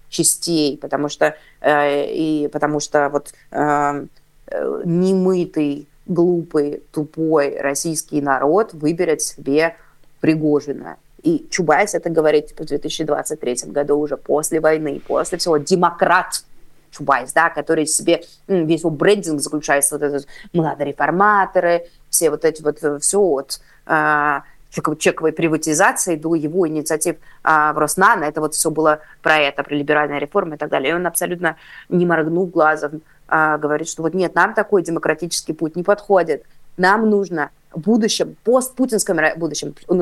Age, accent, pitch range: 20-39, native, 150-175 Hz